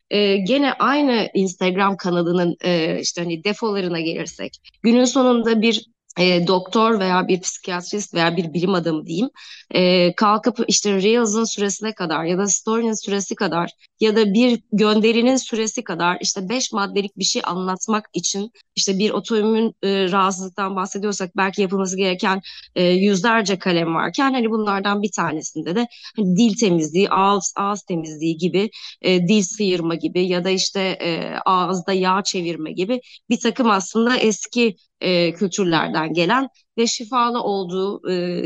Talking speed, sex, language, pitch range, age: 150 wpm, female, Turkish, 185-235 Hz, 30-49